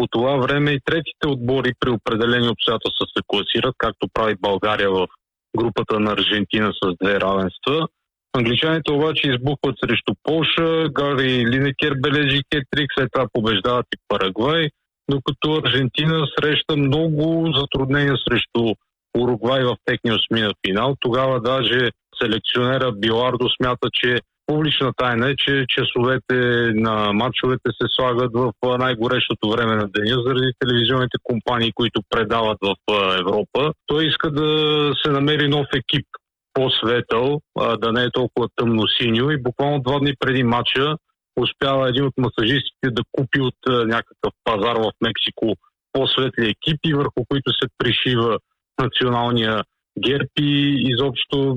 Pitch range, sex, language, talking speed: 120-145 Hz, male, Bulgarian, 135 wpm